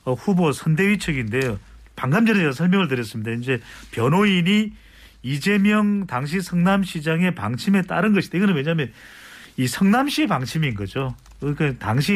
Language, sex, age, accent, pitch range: Korean, male, 40-59, native, 135-200 Hz